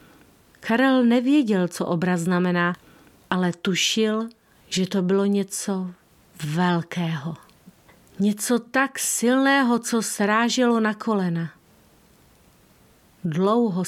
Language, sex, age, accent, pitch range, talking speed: Czech, female, 40-59, native, 185-230 Hz, 85 wpm